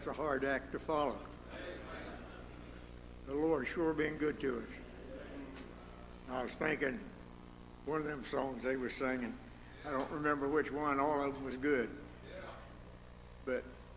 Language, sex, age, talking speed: English, male, 60-79, 145 wpm